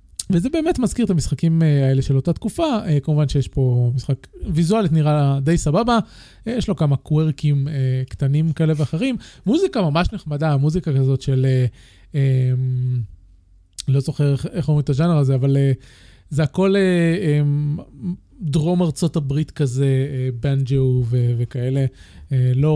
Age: 20-39